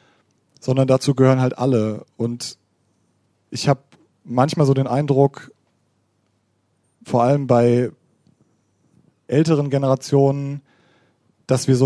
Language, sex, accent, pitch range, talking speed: German, male, German, 125-140 Hz, 100 wpm